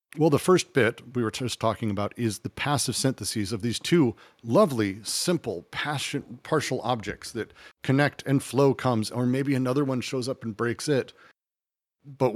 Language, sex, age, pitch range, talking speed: English, male, 40-59, 110-140 Hz, 175 wpm